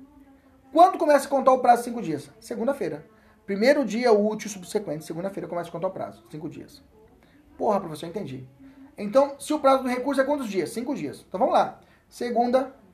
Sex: male